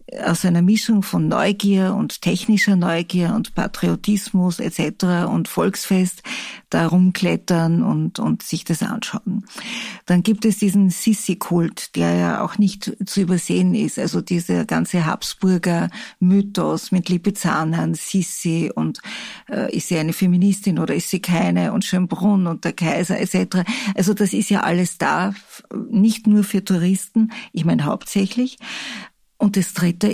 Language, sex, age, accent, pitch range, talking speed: German, female, 50-69, Austrian, 175-210 Hz, 145 wpm